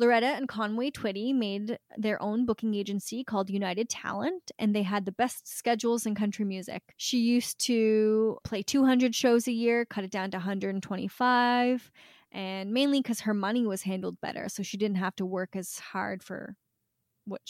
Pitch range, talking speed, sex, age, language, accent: 200-255 Hz, 180 wpm, female, 10-29, English, American